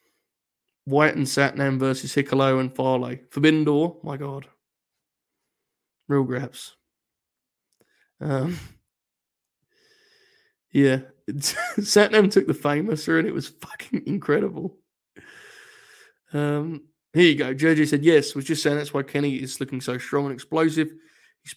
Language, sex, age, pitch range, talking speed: English, male, 20-39, 135-160 Hz, 120 wpm